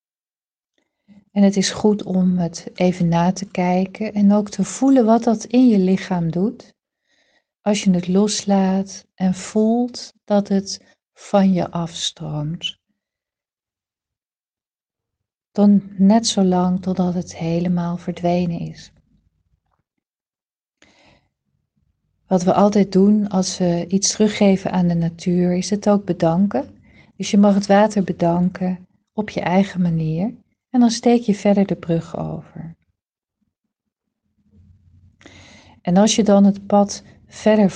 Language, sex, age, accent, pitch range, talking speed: Dutch, female, 40-59, Dutch, 170-205 Hz, 125 wpm